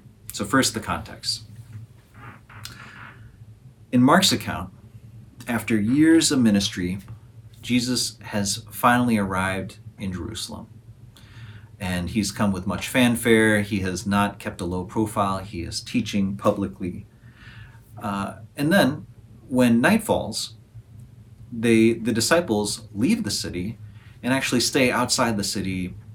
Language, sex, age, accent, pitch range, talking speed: English, male, 30-49, American, 100-115 Hz, 115 wpm